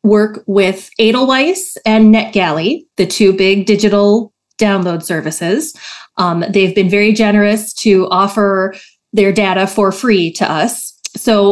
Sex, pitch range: female, 190-225 Hz